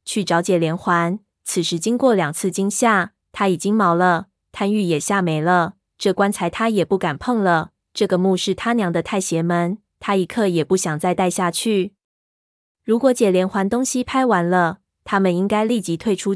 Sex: female